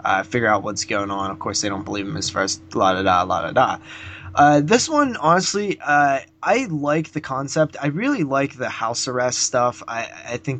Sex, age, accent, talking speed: male, 20-39, American, 205 wpm